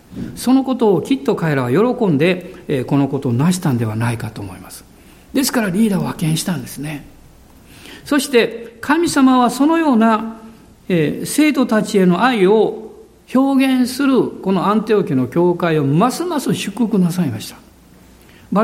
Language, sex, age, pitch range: Japanese, male, 60-79, 150-240 Hz